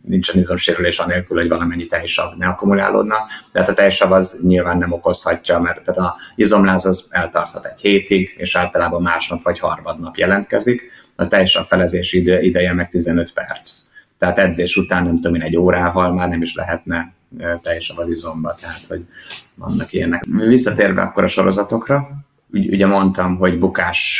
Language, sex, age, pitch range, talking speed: Hungarian, male, 30-49, 85-95 Hz, 160 wpm